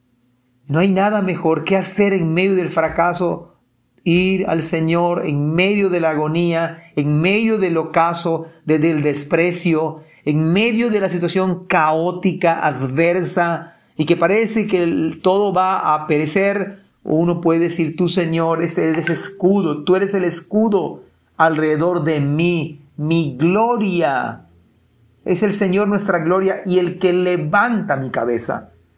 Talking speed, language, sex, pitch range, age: 145 wpm, Spanish, male, 150-185 Hz, 40-59